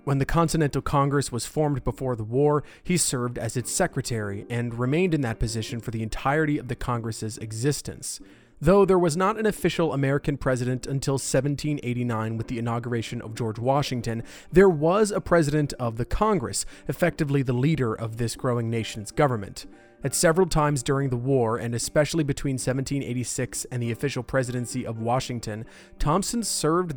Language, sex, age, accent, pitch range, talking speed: English, male, 30-49, American, 120-150 Hz, 165 wpm